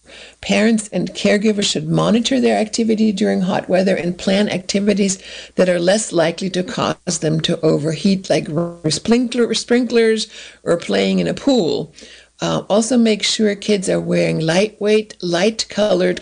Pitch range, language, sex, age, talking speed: 175-215 Hz, English, female, 60-79, 145 wpm